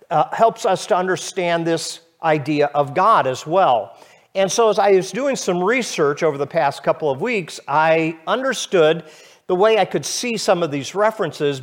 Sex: male